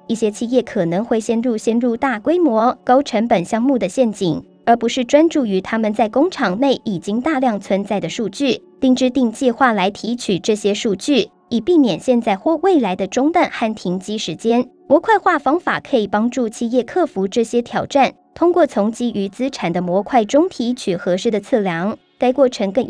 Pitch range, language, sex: 205-260 Hz, Chinese, male